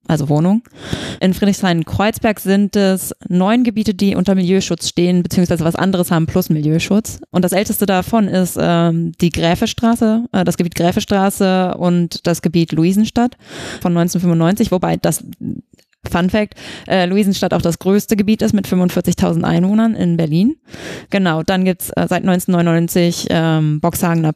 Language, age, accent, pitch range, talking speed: German, 20-39, German, 170-200 Hz, 150 wpm